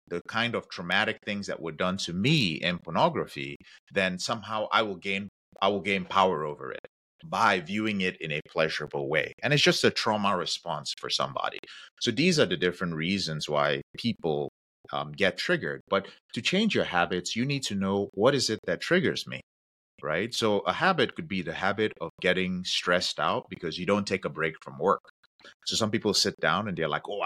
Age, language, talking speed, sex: 30-49, English, 205 wpm, male